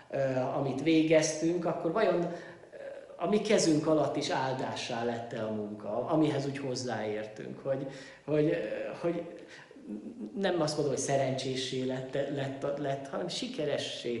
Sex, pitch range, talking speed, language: male, 135-185 Hz, 125 wpm, Hungarian